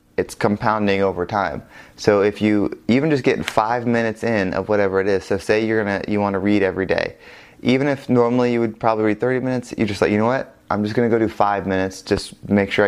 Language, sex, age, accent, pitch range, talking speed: English, male, 20-39, American, 95-115 Hz, 245 wpm